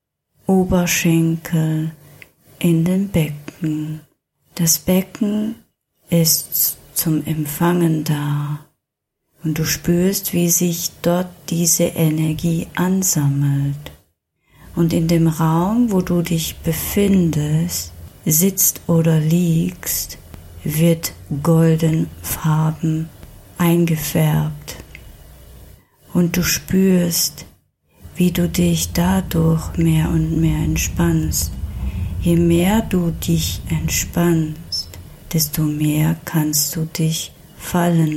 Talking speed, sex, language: 90 wpm, female, German